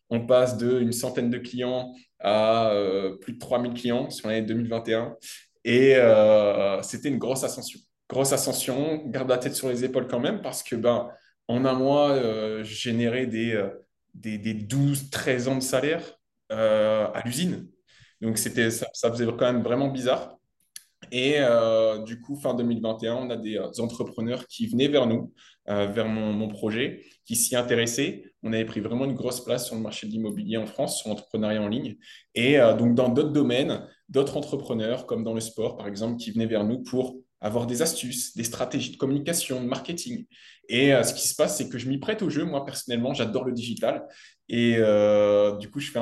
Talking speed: 200 wpm